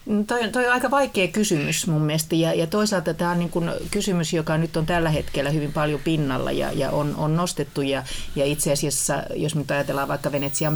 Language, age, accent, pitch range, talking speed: Finnish, 30-49, native, 145-175 Hz, 210 wpm